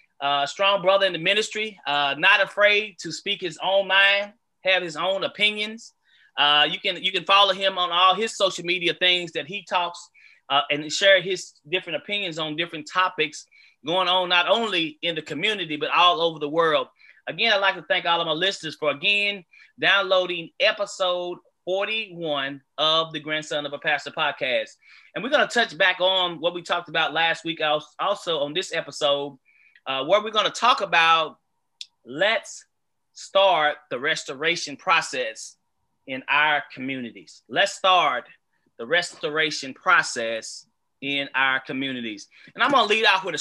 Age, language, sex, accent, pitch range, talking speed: 30-49, English, male, American, 155-195 Hz, 170 wpm